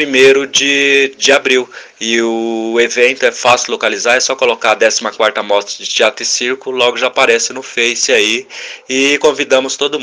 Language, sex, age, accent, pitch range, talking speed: Portuguese, male, 20-39, Brazilian, 115-140 Hz, 175 wpm